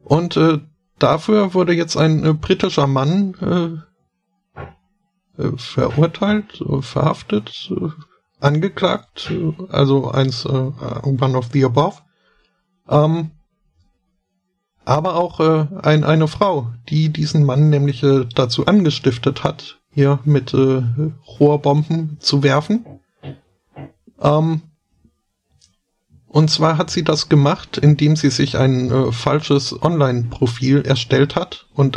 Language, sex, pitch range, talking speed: German, male, 135-165 Hz, 115 wpm